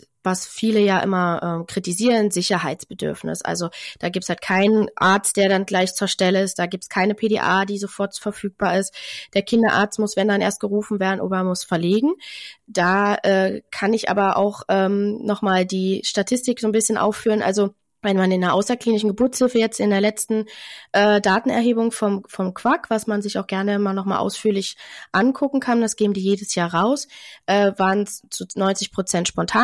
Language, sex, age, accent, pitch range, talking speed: German, female, 20-39, German, 190-220 Hz, 185 wpm